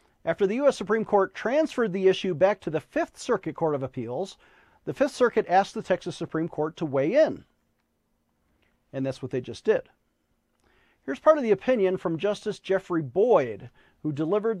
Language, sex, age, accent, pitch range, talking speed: English, male, 40-59, American, 155-210 Hz, 180 wpm